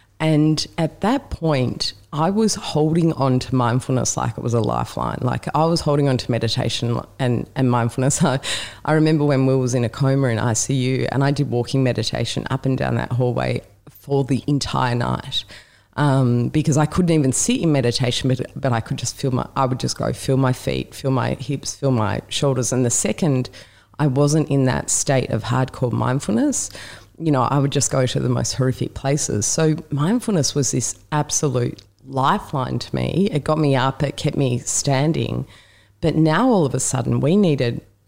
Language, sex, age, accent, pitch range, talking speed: English, female, 30-49, Australian, 120-145 Hz, 195 wpm